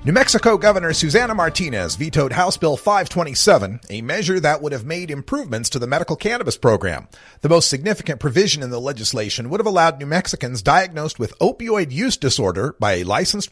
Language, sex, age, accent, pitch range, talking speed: English, male, 40-59, American, 130-195 Hz, 180 wpm